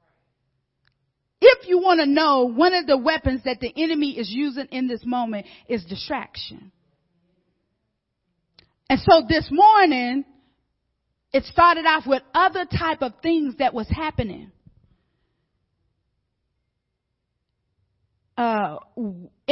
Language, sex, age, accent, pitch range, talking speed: English, female, 40-59, American, 205-315 Hz, 110 wpm